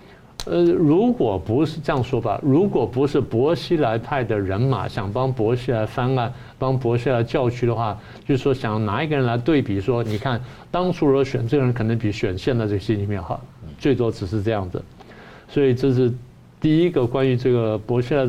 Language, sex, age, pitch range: Chinese, male, 50-69, 115-150 Hz